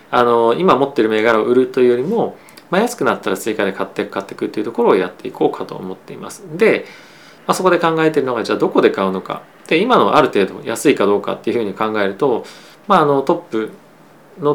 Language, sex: Japanese, male